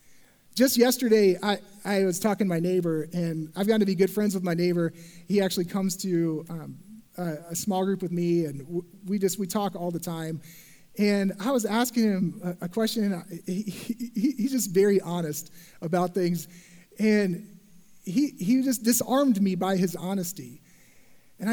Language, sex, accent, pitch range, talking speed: English, male, American, 180-225 Hz, 175 wpm